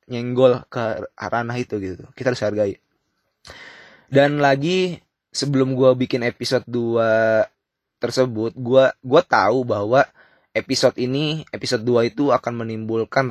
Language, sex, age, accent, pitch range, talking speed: Indonesian, male, 20-39, native, 110-130 Hz, 115 wpm